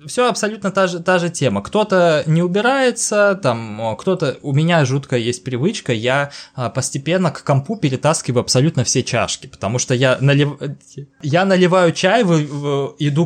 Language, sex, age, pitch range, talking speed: Russian, male, 20-39, 125-170 Hz, 150 wpm